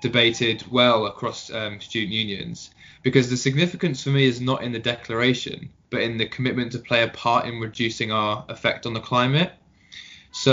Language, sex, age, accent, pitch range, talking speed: English, male, 20-39, British, 110-130 Hz, 180 wpm